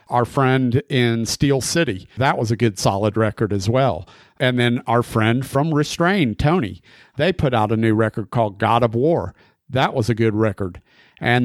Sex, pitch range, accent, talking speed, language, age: male, 110-125 Hz, American, 190 wpm, English, 50-69